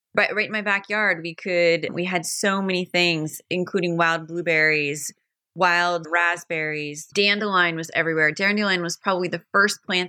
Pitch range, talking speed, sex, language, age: 165-200 Hz, 155 wpm, female, English, 30-49